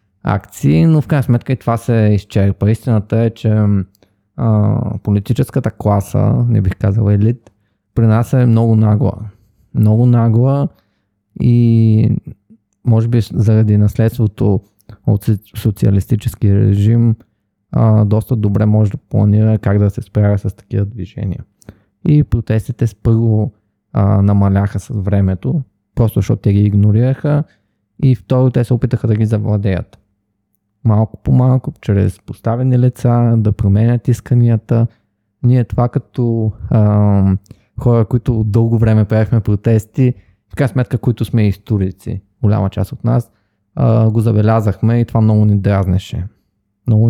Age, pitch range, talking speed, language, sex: 20-39, 100-120 Hz, 130 wpm, Bulgarian, male